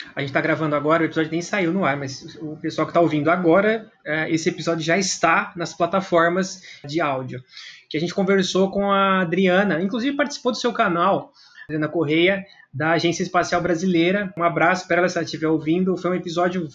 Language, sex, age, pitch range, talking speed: Portuguese, male, 20-39, 160-195 Hz, 195 wpm